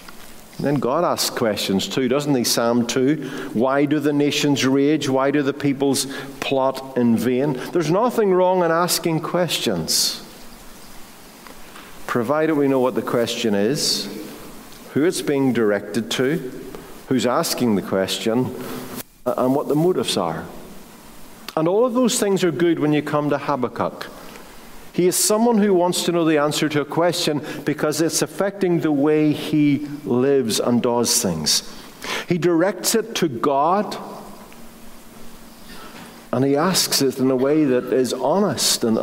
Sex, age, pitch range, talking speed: male, 50-69, 130-175 Hz, 150 wpm